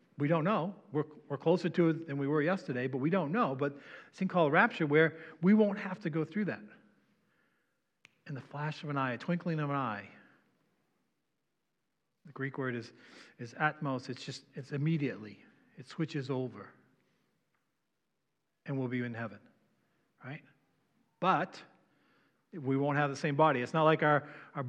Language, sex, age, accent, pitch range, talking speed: English, male, 40-59, American, 130-160 Hz, 175 wpm